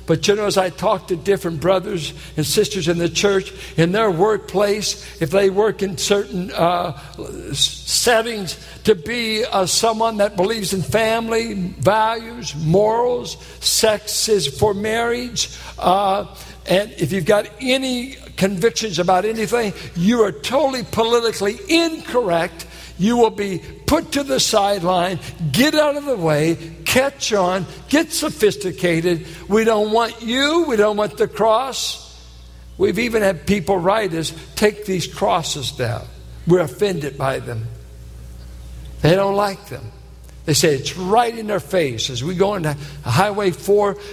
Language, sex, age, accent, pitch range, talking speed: English, male, 60-79, American, 170-220 Hz, 145 wpm